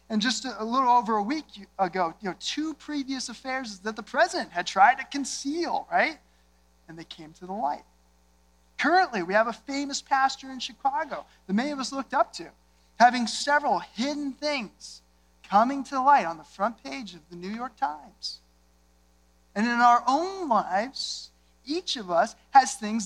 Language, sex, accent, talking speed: English, male, American, 175 wpm